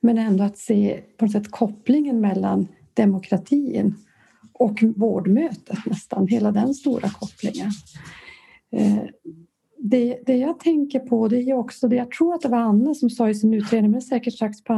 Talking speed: 160 wpm